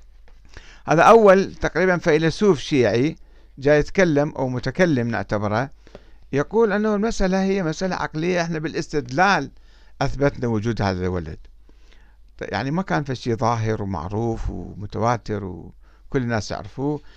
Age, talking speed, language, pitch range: 60-79, 115 wpm, Arabic, 110-160 Hz